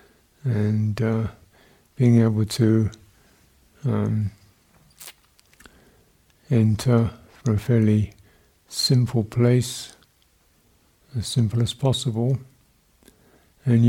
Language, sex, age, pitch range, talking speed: English, male, 60-79, 110-130 Hz, 75 wpm